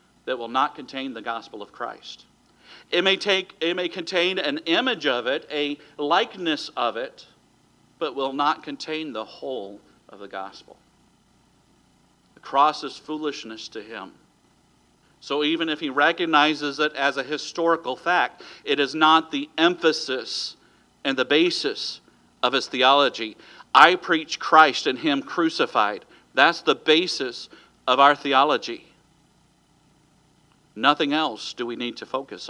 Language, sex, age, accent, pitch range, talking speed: English, male, 50-69, American, 135-190 Hz, 140 wpm